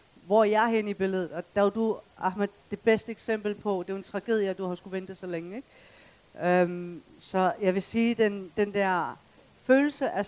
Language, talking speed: Danish, 230 wpm